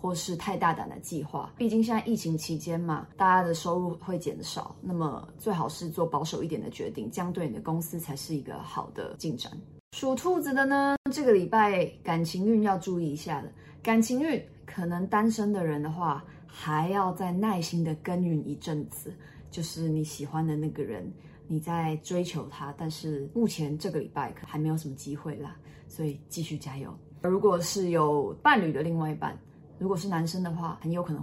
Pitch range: 155-195 Hz